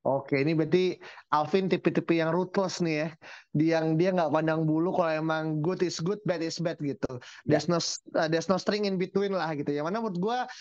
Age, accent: 20-39, native